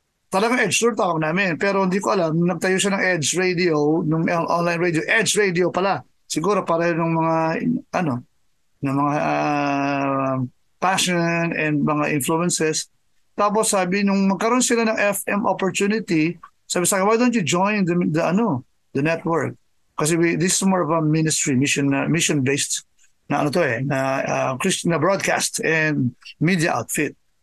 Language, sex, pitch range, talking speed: Filipino, male, 155-195 Hz, 165 wpm